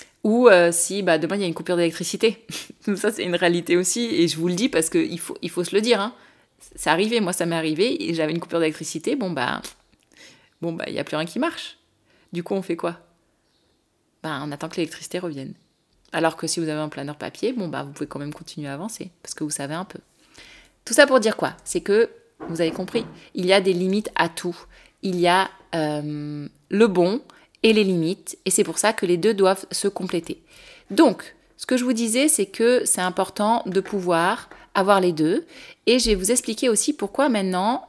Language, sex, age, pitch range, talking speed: French, female, 20-39, 175-230 Hz, 230 wpm